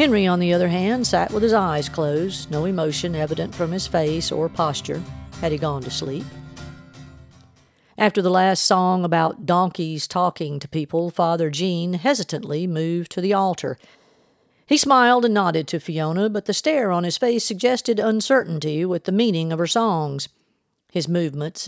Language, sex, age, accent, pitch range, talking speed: English, female, 50-69, American, 160-200 Hz, 170 wpm